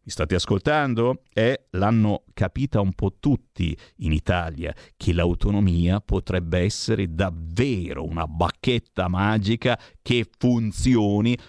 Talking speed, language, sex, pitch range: 110 wpm, Italian, male, 95-130 Hz